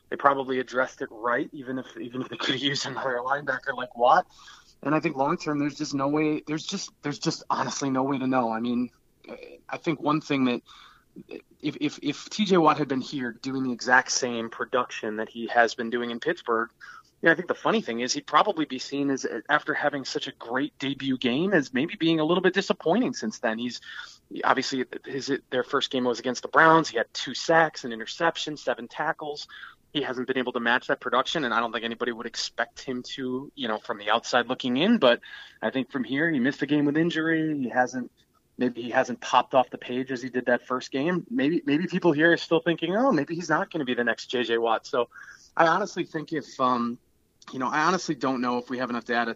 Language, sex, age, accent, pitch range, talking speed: English, male, 20-39, American, 120-150 Hz, 235 wpm